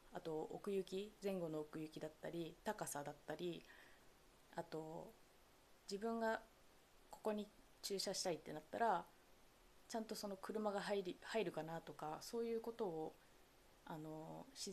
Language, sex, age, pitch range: Japanese, female, 20-39, 160-215 Hz